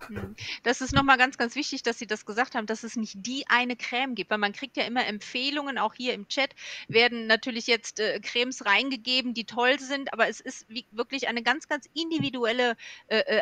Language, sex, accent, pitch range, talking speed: German, female, German, 215-260 Hz, 205 wpm